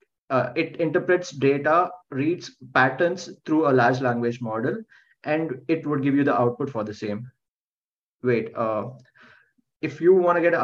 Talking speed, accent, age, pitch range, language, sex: 165 wpm, Indian, 20-39, 130-155 Hz, English, male